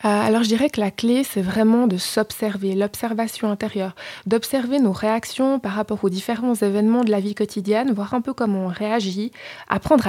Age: 20-39